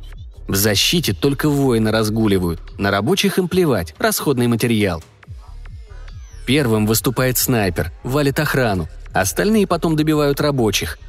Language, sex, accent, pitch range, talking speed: Russian, male, native, 100-135 Hz, 110 wpm